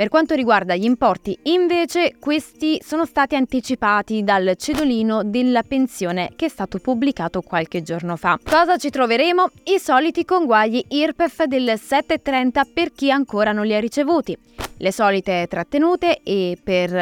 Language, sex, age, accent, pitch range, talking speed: Italian, female, 20-39, native, 195-280 Hz, 150 wpm